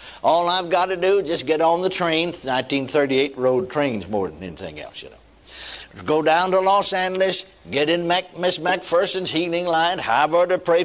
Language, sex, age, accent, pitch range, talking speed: English, male, 60-79, American, 155-200 Hz, 195 wpm